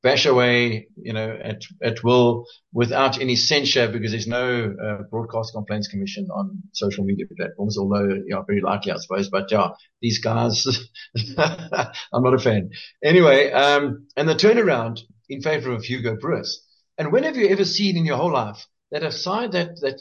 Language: English